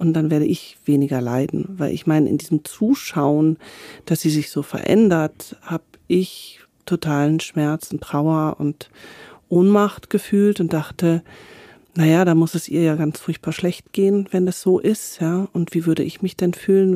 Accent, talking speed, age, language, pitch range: German, 175 wpm, 40-59, German, 155-185 Hz